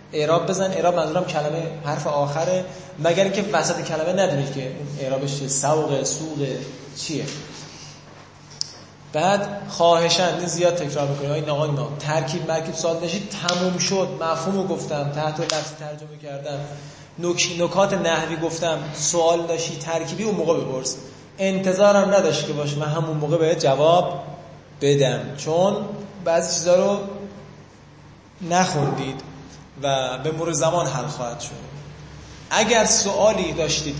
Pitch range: 150-190 Hz